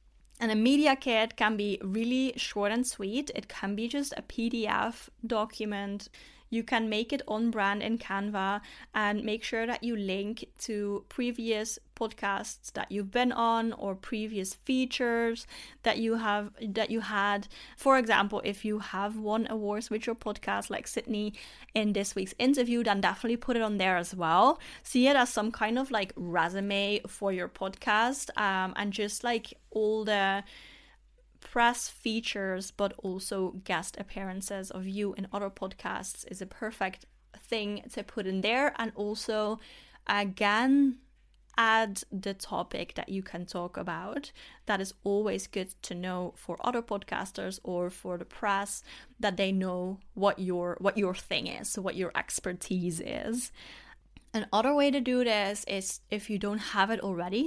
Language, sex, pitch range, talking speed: English, female, 195-235 Hz, 165 wpm